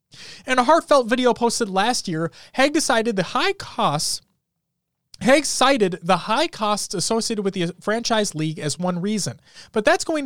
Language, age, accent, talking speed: English, 30-49, American, 165 wpm